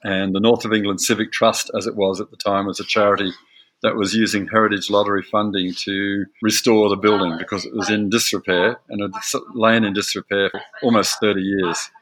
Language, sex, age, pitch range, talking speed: English, male, 50-69, 105-120 Hz, 200 wpm